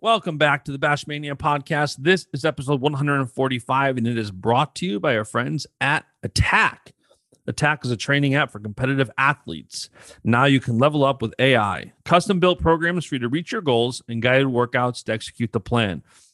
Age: 40-59